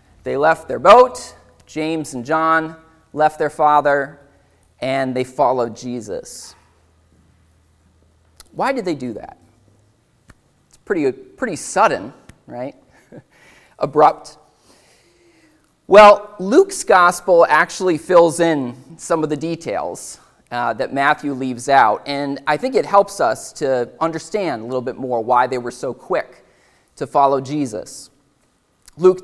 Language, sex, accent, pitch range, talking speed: English, male, American, 135-180 Hz, 125 wpm